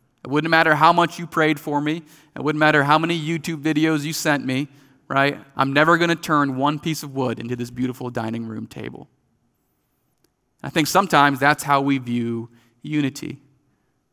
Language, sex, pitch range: English, male, 125-155 Hz